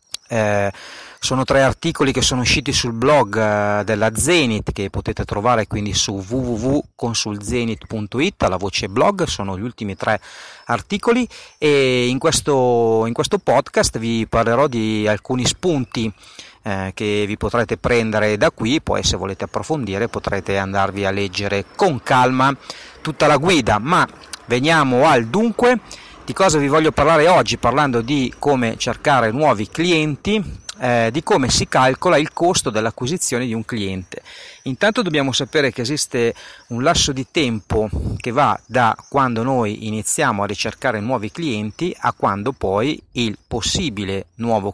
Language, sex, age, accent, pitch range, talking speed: Italian, male, 40-59, native, 105-135 Hz, 145 wpm